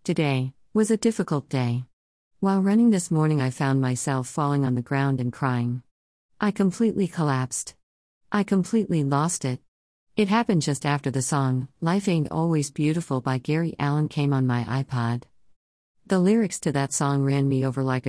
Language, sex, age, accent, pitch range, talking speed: English, female, 50-69, American, 130-165 Hz, 170 wpm